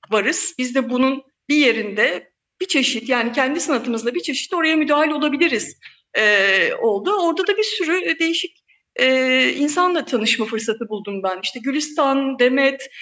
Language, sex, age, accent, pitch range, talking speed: Turkish, female, 50-69, native, 240-330 Hz, 150 wpm